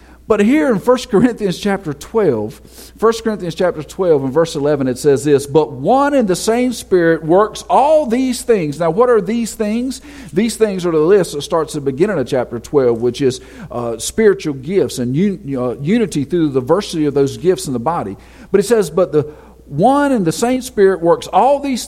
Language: English